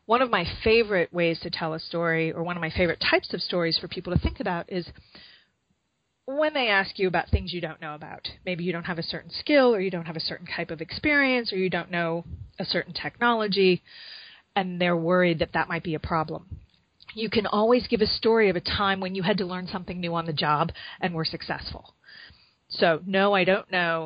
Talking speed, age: 230 wpm, 30-49